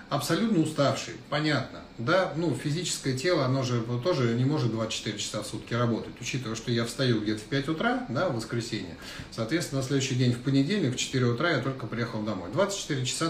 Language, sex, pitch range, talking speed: Russian, male, 115-155 Hz, 200 wpm